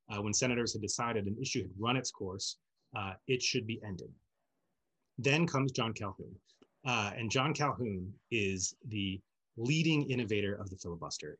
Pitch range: 105-135 Hz